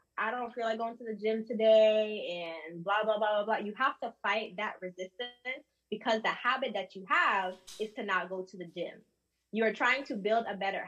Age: 20-39